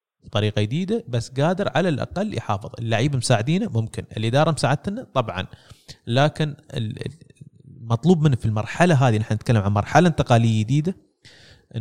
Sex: male